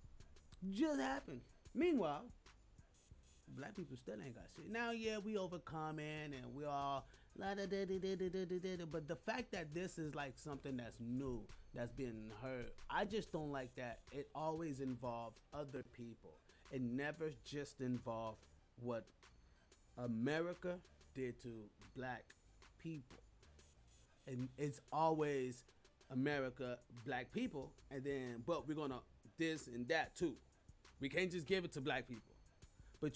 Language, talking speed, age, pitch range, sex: English, 130 wpm, 30-49, 115-160 Hz, male